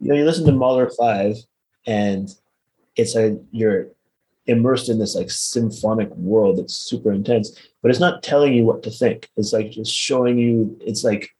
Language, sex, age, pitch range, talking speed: English, male, 30-49, 105-120 Hz, 185 wpm